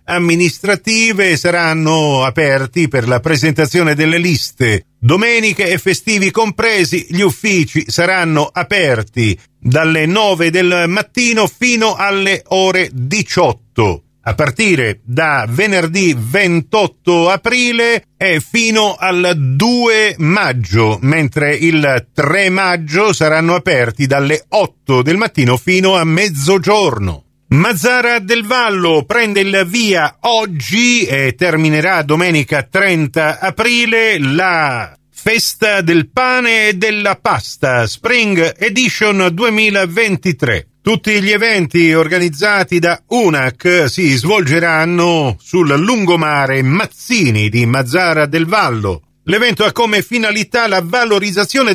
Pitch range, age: 155-210 Hz, 50-69